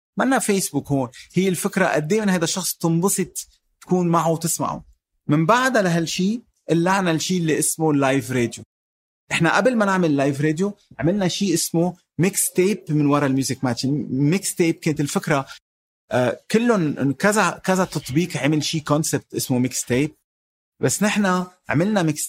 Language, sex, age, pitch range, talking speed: Arabic, male, 30-49, 135-180 Hz, 145 wpm